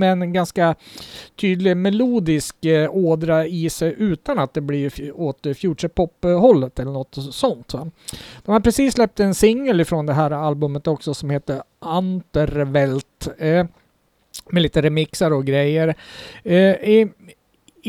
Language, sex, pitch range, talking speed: Swedish, male, 140-185 Hz, 140 wpm